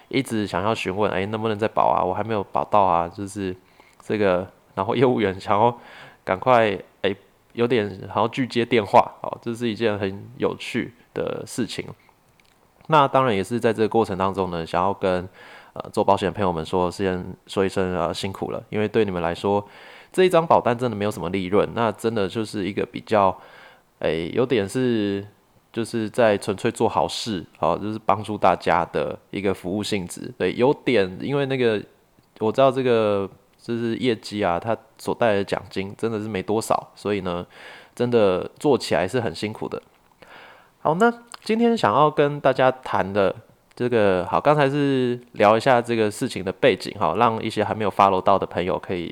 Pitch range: 95-120 Hz